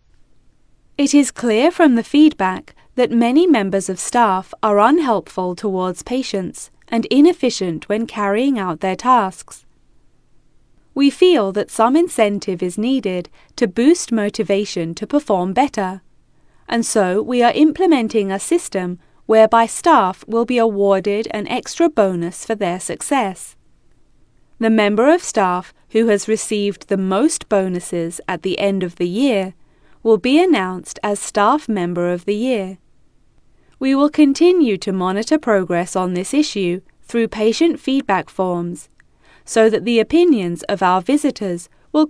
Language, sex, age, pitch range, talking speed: Vietnamese, female, 20-39, 185-255 Hz, 140 wpm